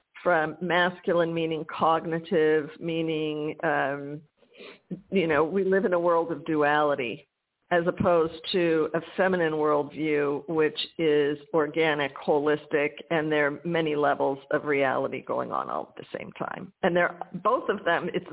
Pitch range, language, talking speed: 160-185 Hz, English, 145 wpm